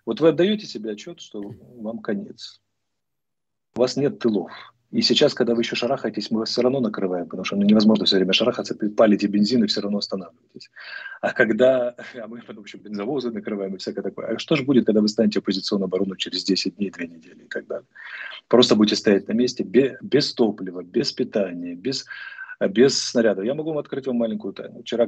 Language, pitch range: Russian, 100-125 Hz